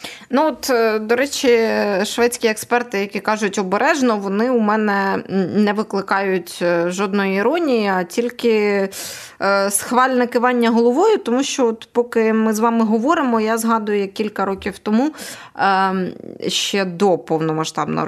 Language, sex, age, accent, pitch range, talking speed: Ukrainian, female, 20-39, native, 180-230 Hz, 125 wpm